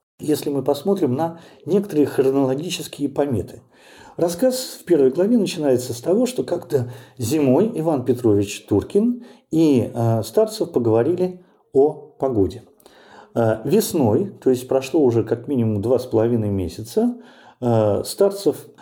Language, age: Russian, 50-69